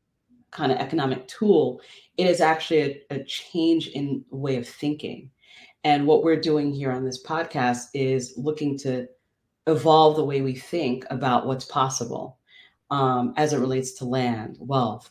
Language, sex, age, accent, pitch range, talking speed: English, female, 30-49, American, 130-165 Hz, 160 wpm